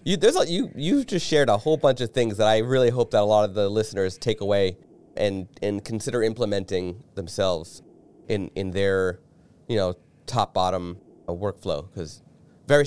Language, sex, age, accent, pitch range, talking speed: English, male, 30-49, American, 100-140 Hz, 175 wpm